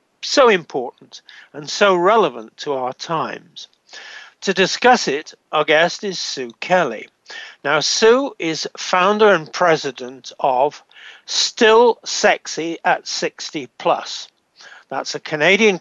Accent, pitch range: British, 145-195 Hz